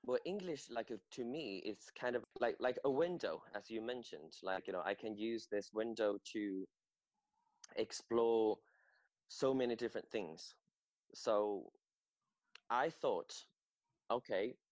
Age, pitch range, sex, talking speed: 20-39, 100-130 Hz, male, 140 wpm